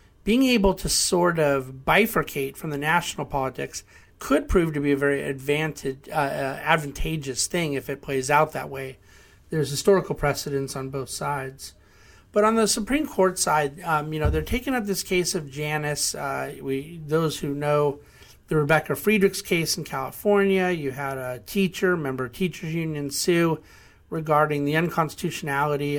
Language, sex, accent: English, male, American